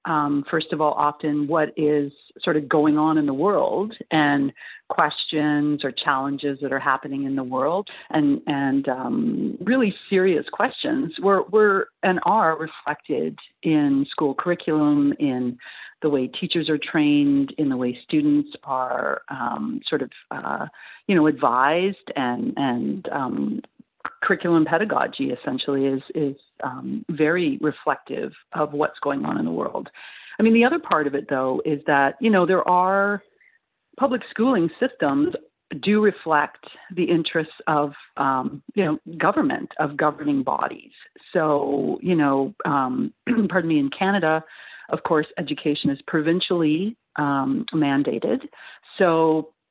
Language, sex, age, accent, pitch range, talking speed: English, female, 40-59, American, 145-195 Hz, 145 wpm